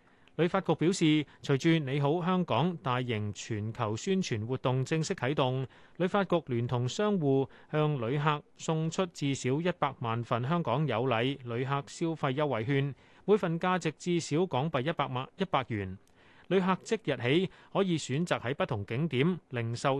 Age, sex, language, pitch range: 30-49, male, Chinese, 125-175 Hz